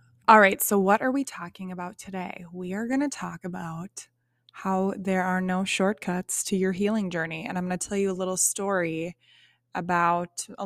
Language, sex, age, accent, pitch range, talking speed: English, female, 20-39, American, 170-195 Hz, 185 wpm